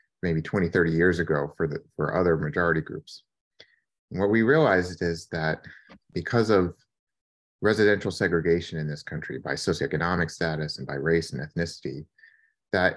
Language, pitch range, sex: English, 80-95 Hz, male